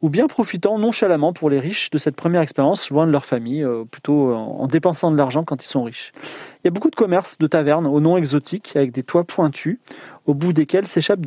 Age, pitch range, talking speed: 30-49, 135-175 Hz, 230 wpm